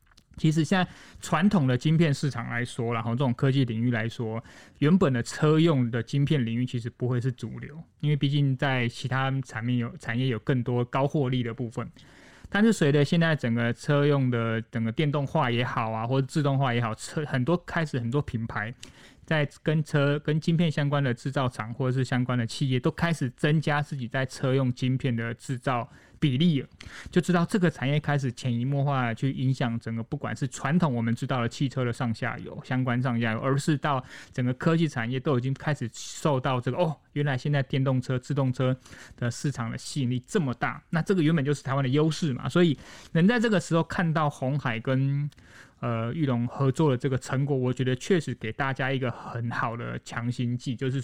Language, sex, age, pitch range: Chinese, male, 20-39, 120-150 Hz